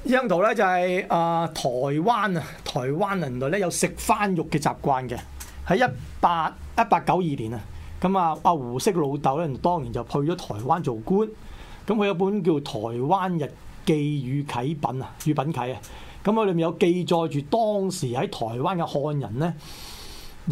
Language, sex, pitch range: Chinese, male, 125-180 Hz